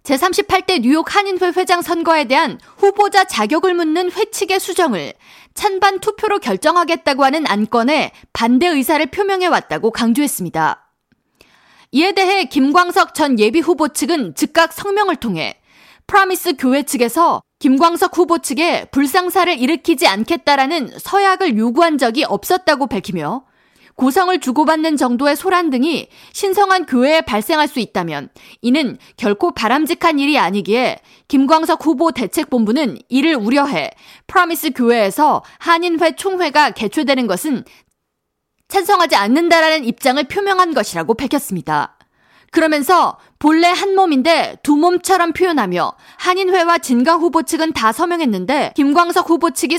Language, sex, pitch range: Korean, female, 255-355 Hz